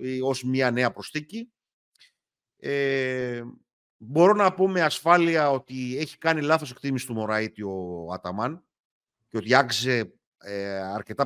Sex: male